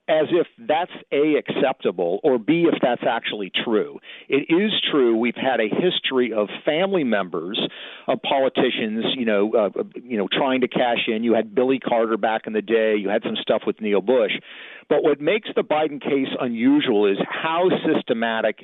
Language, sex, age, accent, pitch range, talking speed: English, male, 50-69, American, 115-145 Hz, 185 wpm